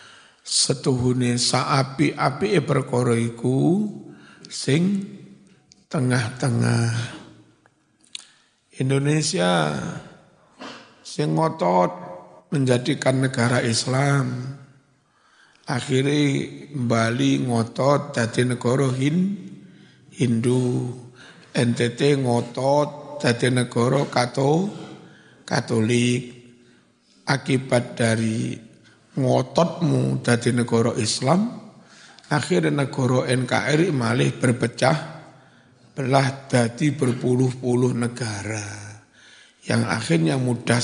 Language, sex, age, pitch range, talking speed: Indonesian, male, 60-79, 120-145 Hz, 60 wpm